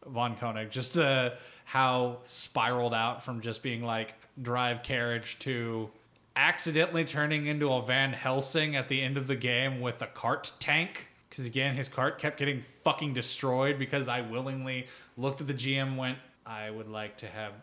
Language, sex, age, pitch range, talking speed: English, male, 20-39, 110-135 Hz, 175 wpm